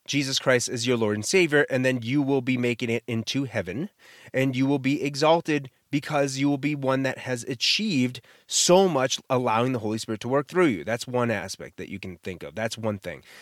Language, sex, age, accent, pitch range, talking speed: English, male, 30-49, American, 120-160 Hz, 225 wpm